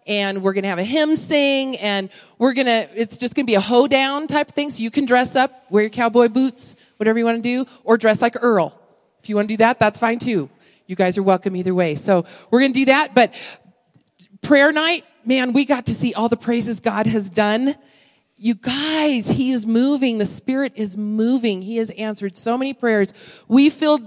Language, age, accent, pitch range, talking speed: English, 40-59, American, 190-245 Hz, 230 wpm